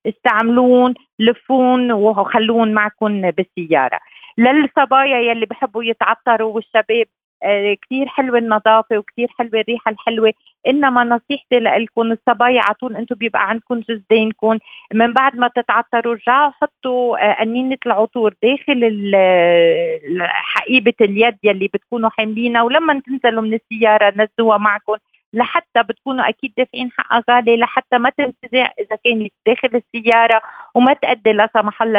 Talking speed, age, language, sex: 120 wpm, 40-59, Arabic, female